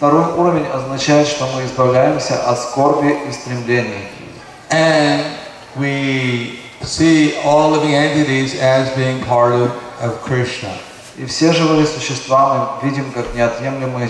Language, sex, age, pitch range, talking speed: Russian, male, 30-49, 120-145 Hz, 75 wpm